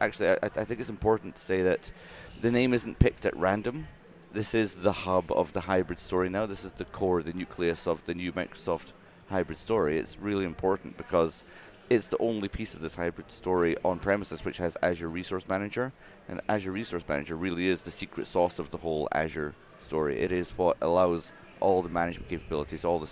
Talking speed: 200 wpm